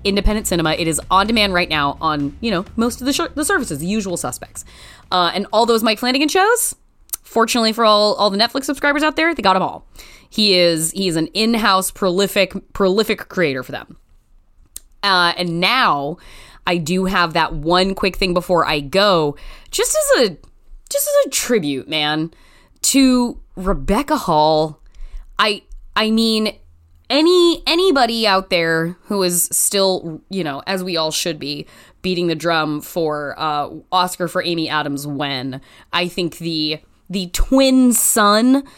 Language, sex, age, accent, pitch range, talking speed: English, female, 20-39, American, 165-220 Hz, 165 wpm